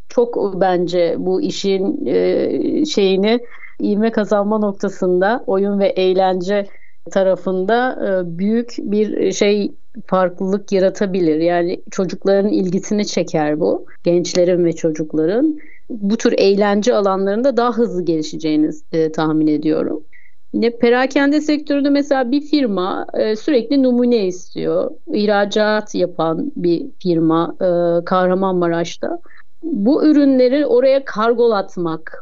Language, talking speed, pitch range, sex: Turkish, 95 wpm, 185-235 Hz, female